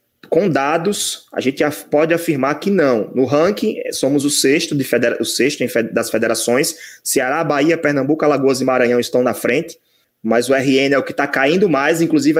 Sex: male